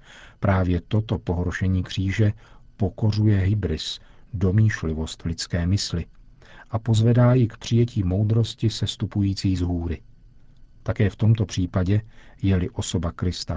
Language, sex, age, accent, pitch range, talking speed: Czech, male, 50-69, native, 95-115 Hz, 115 wpm